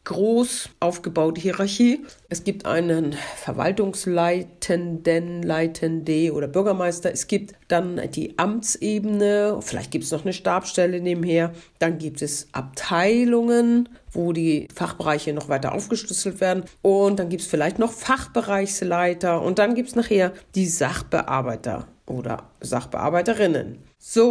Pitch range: 165-205 Hz